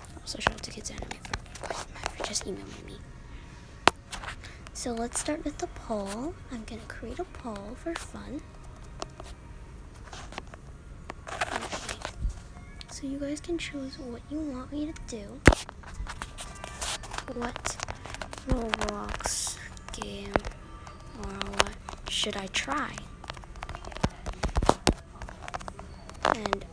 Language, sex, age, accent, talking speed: English, female, 10-29, American, 95 wpm